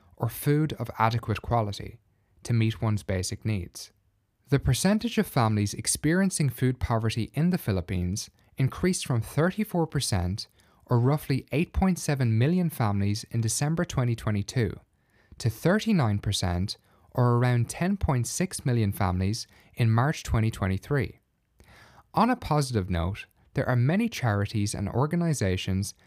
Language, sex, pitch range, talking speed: English, male, 100-145 Hz, 115 wpm